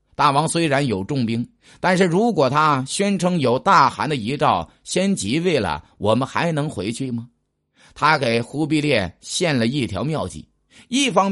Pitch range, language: 100-160 Hz, Chinese